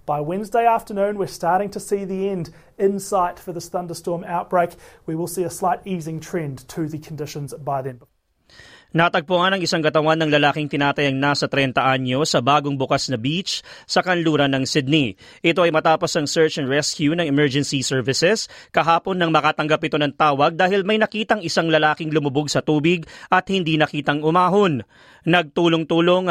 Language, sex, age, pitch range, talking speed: Filipino, male, 30-49, 150-185 Hz, 170 wpm